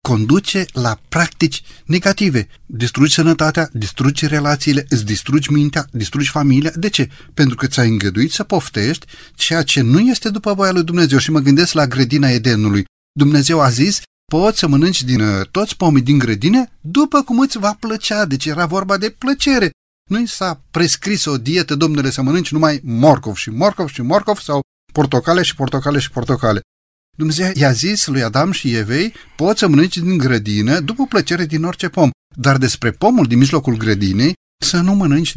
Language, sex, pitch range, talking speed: Romanian, male, 125-170 Hz, 175 wpm